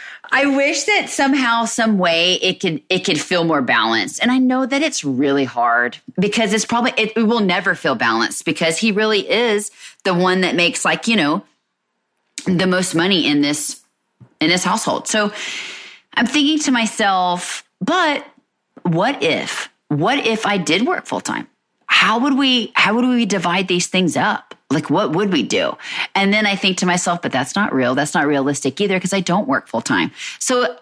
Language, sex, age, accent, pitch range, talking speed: English, female, 30-49, American, 155-225 Hz, 190 wpm